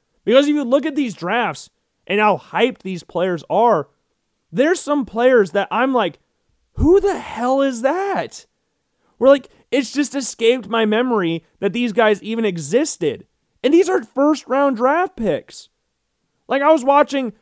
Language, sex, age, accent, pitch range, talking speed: English, male, 30-49, American, 180-275 Hz, 160 wpm